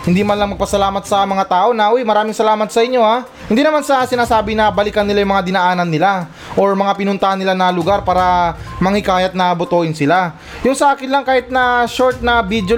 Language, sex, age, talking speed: Filipino, male, 20-39, 210 wpm